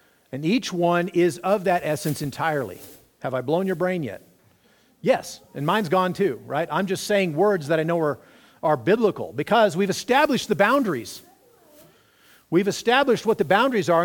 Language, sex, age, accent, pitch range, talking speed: English, male, 50-69, American, 150-205 Hz, 175 wpm